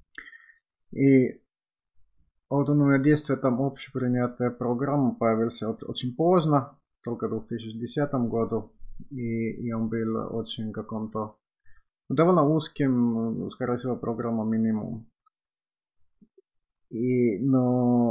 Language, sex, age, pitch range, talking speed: Finnish, male, 30-49, 110-135 Hz, 95 wpm